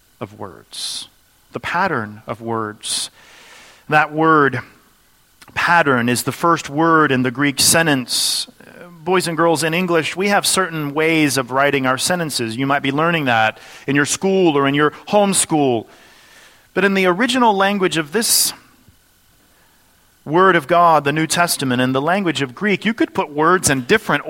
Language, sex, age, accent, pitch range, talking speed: English, male, 40-59, American, 140-195 Hz, 165 wpm